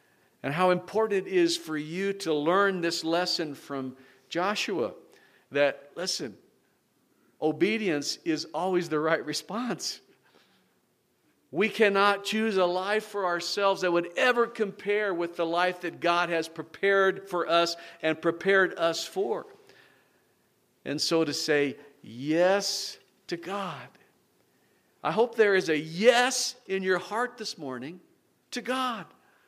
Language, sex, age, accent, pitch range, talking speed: English, male, 50-69, American, 160-210 Hz, 130 wpm